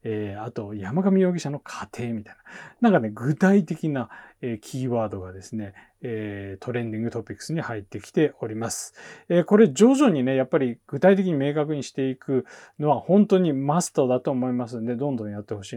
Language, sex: Japanese, male